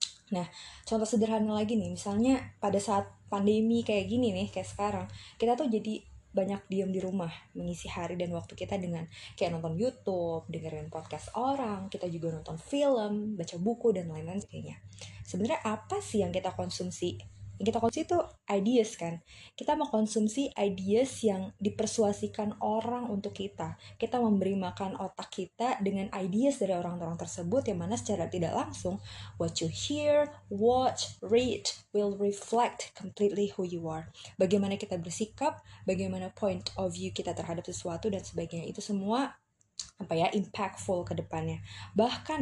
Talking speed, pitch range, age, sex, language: 150 wpm, 180-225 Hz, 20-39, female, Indonesian